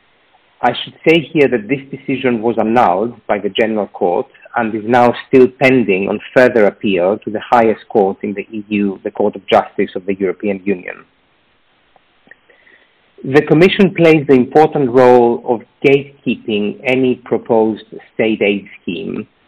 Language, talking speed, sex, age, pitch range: English, 150 wpm, male, 50-69, 105-130 Hz